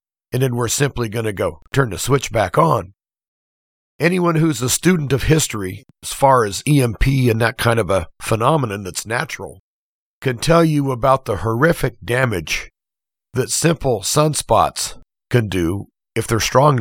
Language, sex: English, male